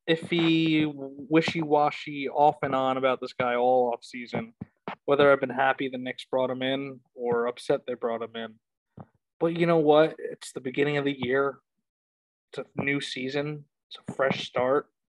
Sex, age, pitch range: male, 20-39, 130-155 Hz